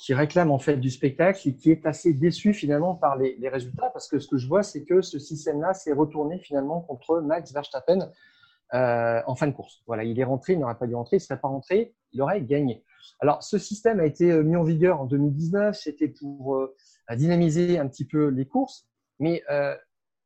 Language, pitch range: French, 140-180 Hz